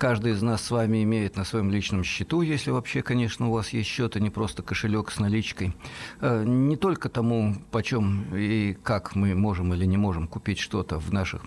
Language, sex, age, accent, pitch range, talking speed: Russian, male, 50-69, native, 95-120 Hz, 200 wpm